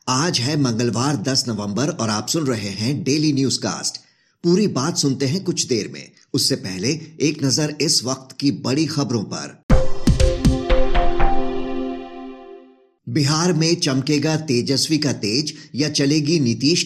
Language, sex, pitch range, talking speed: Hindi, male, 120-150 Hz, 140 wpm